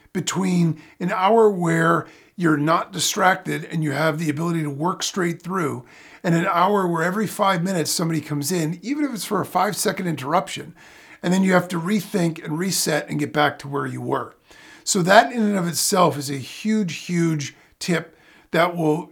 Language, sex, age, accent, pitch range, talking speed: English, male, 50-69, American, 150-185 Hz, 190 wpm